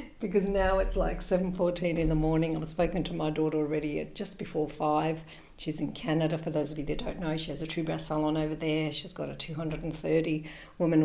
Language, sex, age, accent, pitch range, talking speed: English, female, 50-69, Australian, 150-170 Hz, 215 wpm